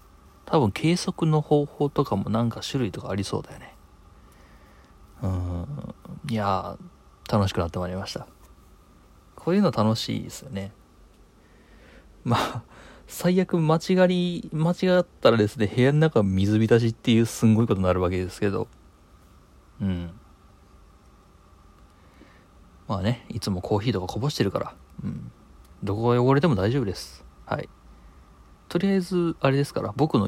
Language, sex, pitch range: Japanese, male, 90-120 Hz